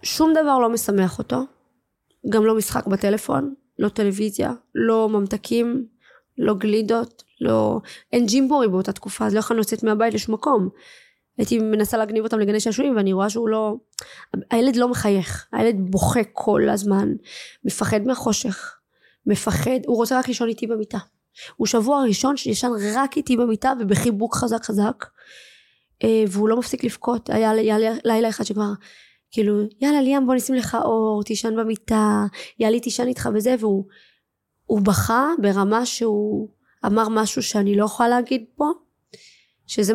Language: Hebrew